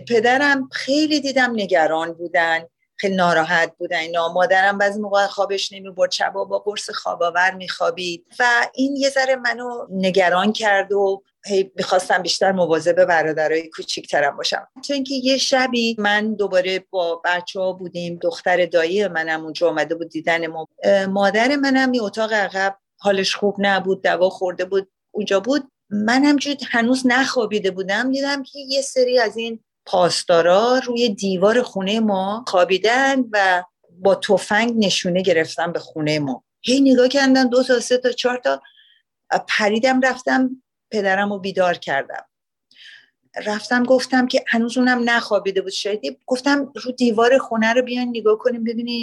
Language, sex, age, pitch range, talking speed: Persian, female, 40-59, 185-250 Hz, 145 wpm